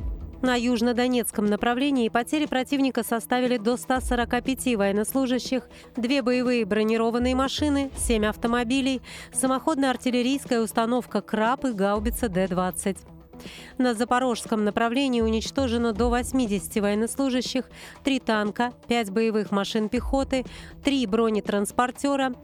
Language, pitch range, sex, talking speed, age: Russian, 215-260 Hz, female, 100 wpm, 30-49